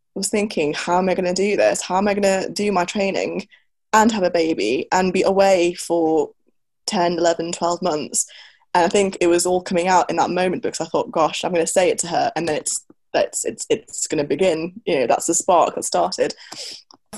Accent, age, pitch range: British, 10-29, 170-200 Hz